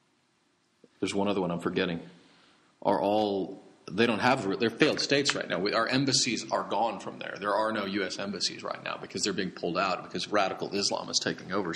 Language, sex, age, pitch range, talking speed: English, male, 40-59, 95-120 Hz, 210 wpm